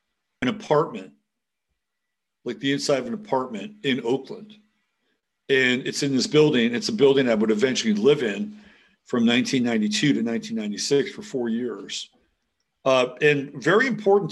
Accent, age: American, 50-69